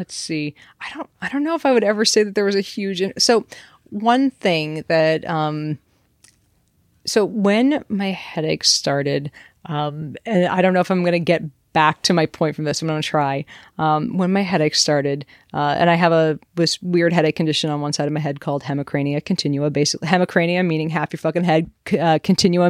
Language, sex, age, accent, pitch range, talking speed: English, female, 30-49, American, 155-195 Hz, 210 wpm